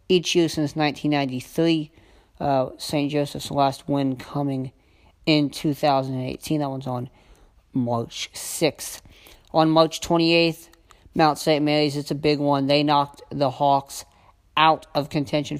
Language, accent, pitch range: English, American, 130-155 Hz